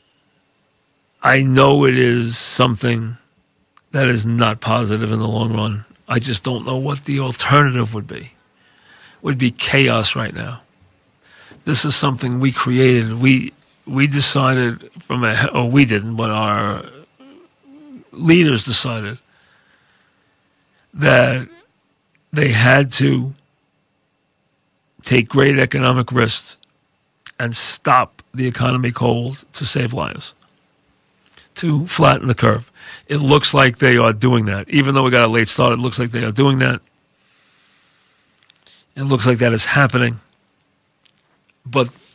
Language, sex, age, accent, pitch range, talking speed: English, male, 40-59, American, 115-135 Hz, 130 wpm